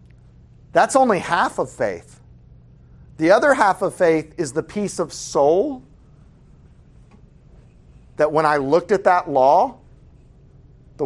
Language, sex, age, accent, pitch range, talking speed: English, male, 40-59, American, 155-210 Hz, 125 wpm